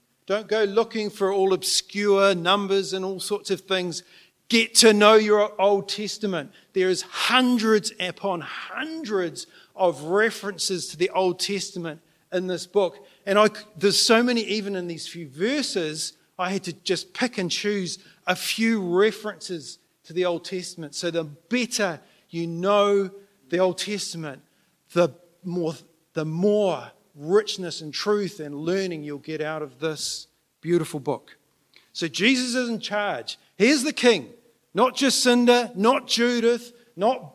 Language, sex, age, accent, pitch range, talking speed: English, male, 40-59, Australian, 175-220 Hz, 150 wpm